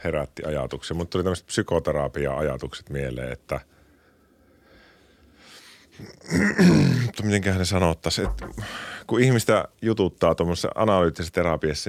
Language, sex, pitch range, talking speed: Finnish, male, 70-95 Hz, 95 wpm